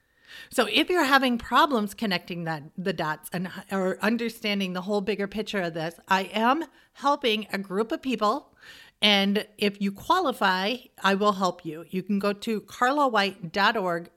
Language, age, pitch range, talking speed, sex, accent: English, 50-69, 185-235 Hz, 160 wpm, female, American